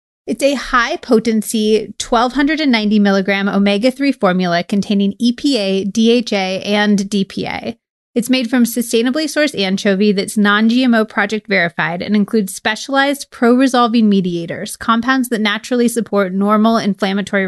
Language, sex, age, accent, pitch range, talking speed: English, female, 30-49, American, 195-240 Hz, 110 wpm